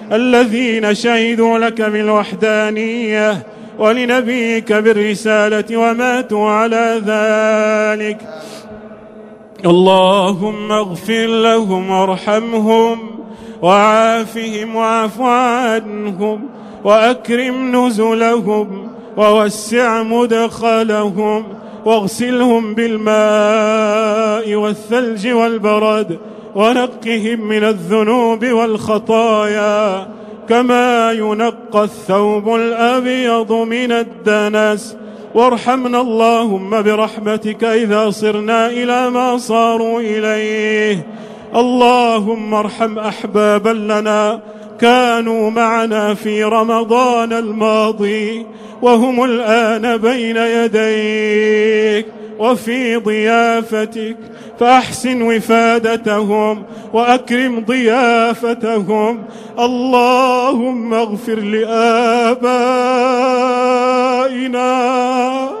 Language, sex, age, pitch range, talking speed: Arabic, male, 30-49, 215-235 Hz, 60 wpm